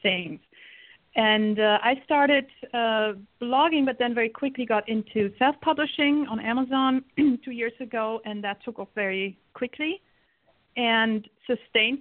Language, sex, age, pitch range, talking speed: English, female, 50-69, 195-245 Hz, 135 wpm